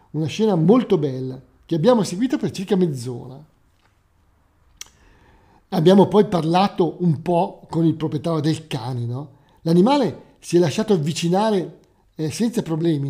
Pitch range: 140-190 Hz